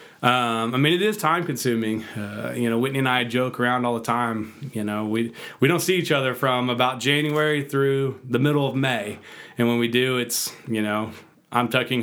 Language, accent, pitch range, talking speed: English, American, 115-135 Hz, 215 wpm